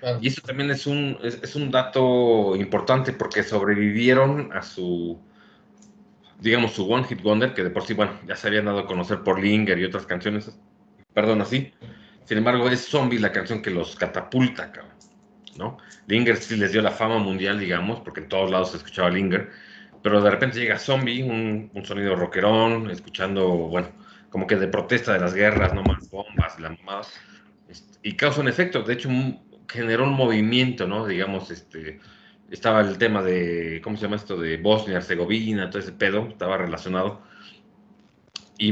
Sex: male